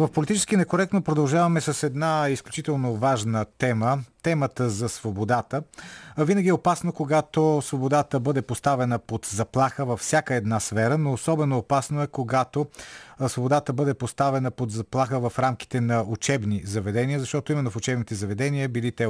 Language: Bulgarian